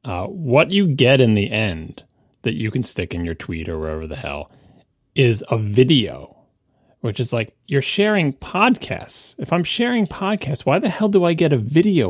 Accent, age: American, 30-49